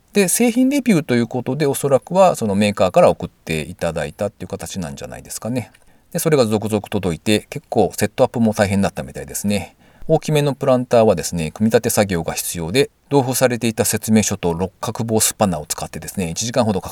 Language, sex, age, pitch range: Japanese, male, 40-59, 95-150 Hz